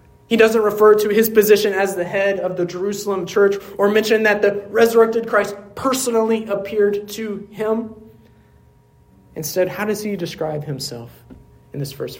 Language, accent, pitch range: English, American, 140-210 Hz